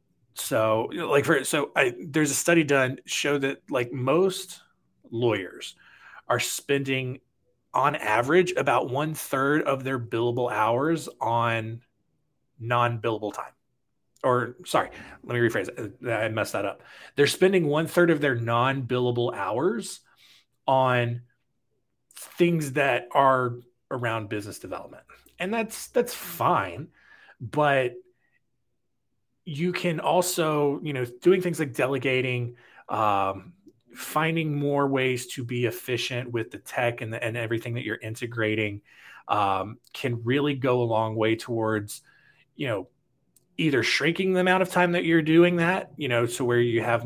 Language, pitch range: English, 115-145 Hz